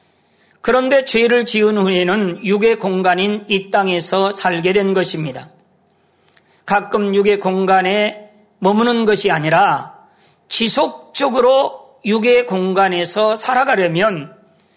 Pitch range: 190-230 Hz